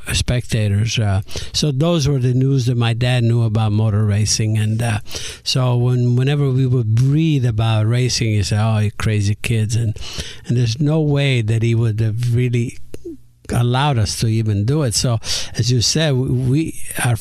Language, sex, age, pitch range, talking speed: English, male, 60-79, 110-130 Hz, 185 wpm